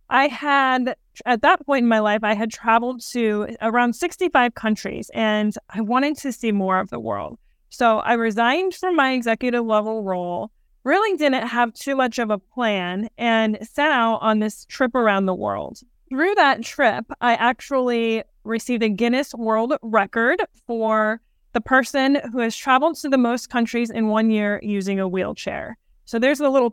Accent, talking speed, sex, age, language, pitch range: American, 175 wpm, female, 20-39, English, 210-250 Hz